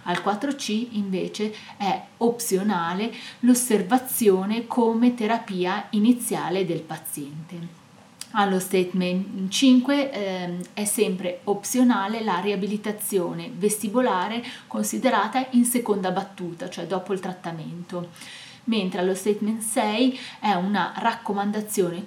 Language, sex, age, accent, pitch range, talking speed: Italian, female, 30-49, native, 180-225 Hz, 100 wpm